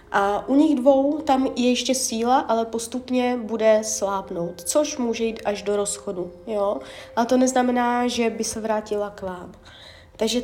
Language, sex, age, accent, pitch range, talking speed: Czech, female, 30-49, native, 215-270 Hz, 165 wpm